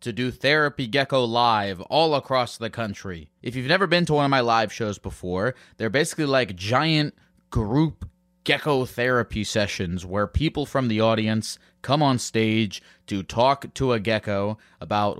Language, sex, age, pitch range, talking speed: English, male, 20-39, 105-140 Hz, 165 wpm